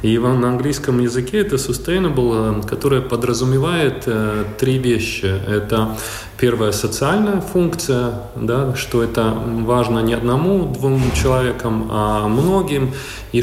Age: 30-49